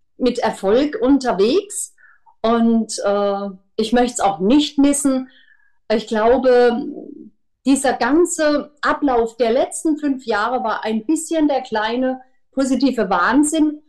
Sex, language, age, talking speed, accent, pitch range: female, German, 40-59, 115 wpm, German, 225-285 Hz